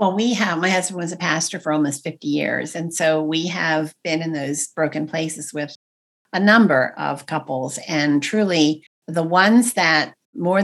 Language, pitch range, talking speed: English, 155-180 Hz, 180 wpm